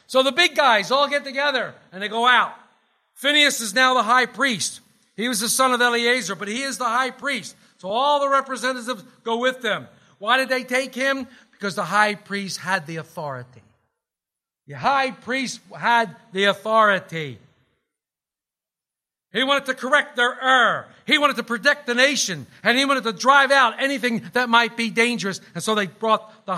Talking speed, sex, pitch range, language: 185 wpm, male, 210-280 Hz, English